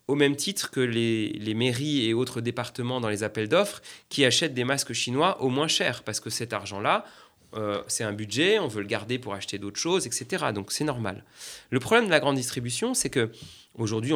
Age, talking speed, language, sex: 30-49, 210 wpm, French, male